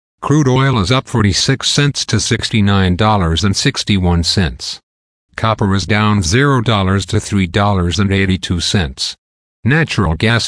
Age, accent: 50-69, American